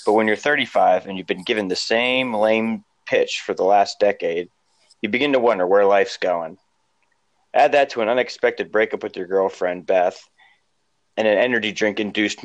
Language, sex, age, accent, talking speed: English, male, 30-49, American, 180 wpm